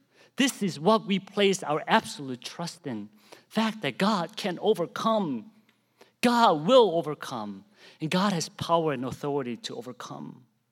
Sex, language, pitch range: male, English, 135-190 Hz